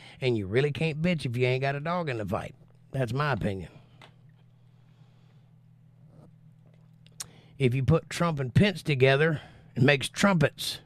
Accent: American